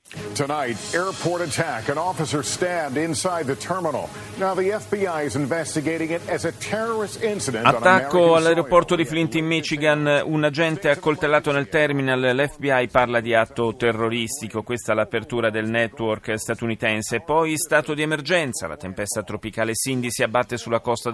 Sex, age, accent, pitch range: male, 40-59, native, 110-160 Hz